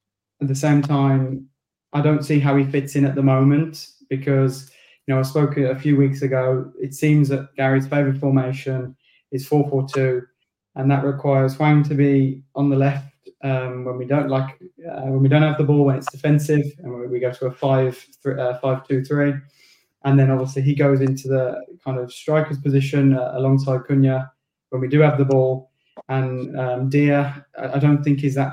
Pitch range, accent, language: 130-140 Hz, British, English